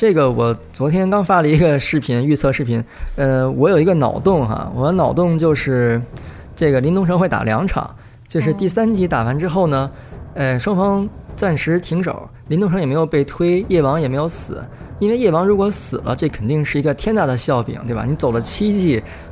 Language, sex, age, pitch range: Chinese, male, 20-39, 130-175 Hz